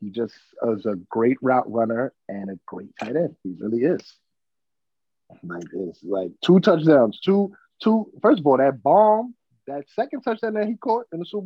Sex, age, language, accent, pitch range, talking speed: male, 30-49, English, American, 115-185 Hz, 195 wpm